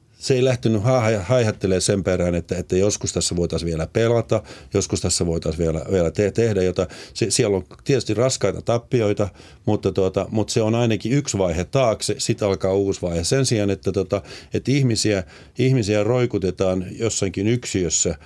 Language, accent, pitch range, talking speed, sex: Finnish, native, 95-115 Hz, 170 wpm, male